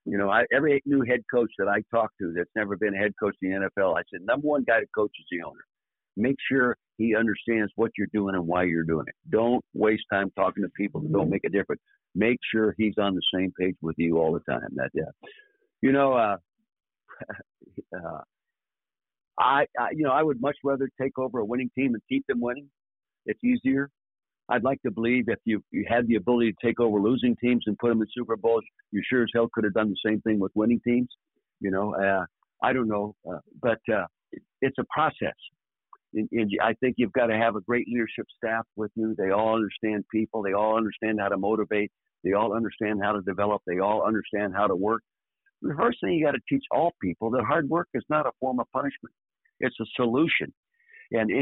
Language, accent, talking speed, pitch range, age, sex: English, American, 225 wpm, 105-130 Hz, 60-79, male